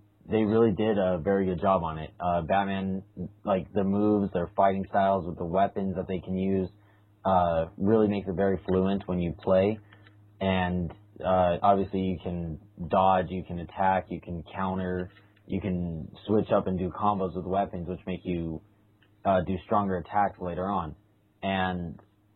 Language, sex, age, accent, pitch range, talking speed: English, male, 20-39, American, 90-105 Hz, 170 wpm